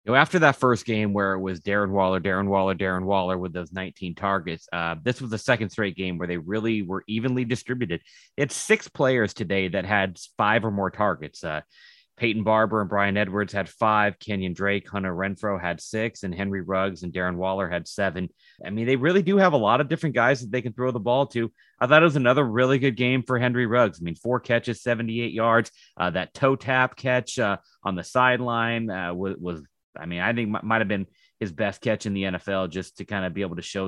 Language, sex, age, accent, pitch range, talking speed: English, male, 30-49, American, 95-125 Hz, 235 wpm